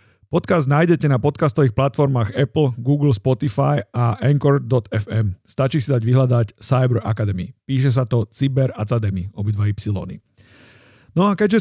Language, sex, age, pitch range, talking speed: Slovak, male, 40-59, 110-135 Hz, 135 wpm